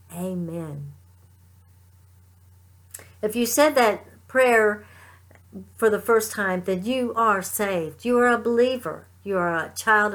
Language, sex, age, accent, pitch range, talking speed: English, female, 60-79, American, 170-245 Hz, 130 wpm